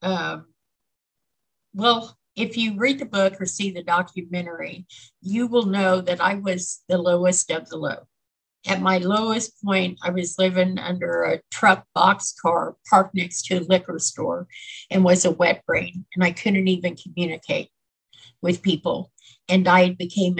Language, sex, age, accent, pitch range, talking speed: English, female, 50-69, American, 180-220 Hz, 160 wpm